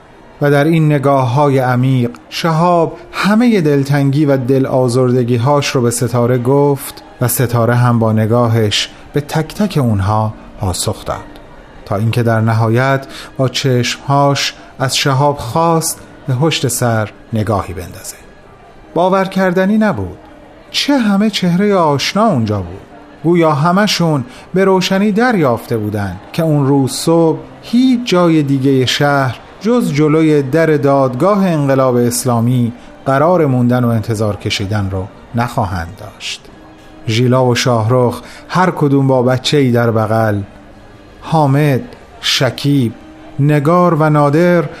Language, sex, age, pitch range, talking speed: Persian, male, 30-49, 120-155 Hz, 125 wpm